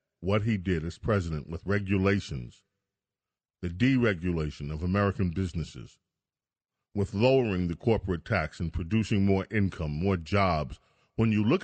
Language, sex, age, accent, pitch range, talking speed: English, male, 50-69, American, 95-110 Hz, 135 wpm